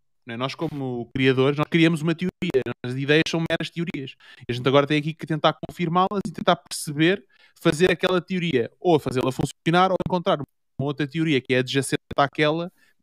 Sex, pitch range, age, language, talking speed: male, 135-180 Hz, 20-39, Portuguese, 190 wpm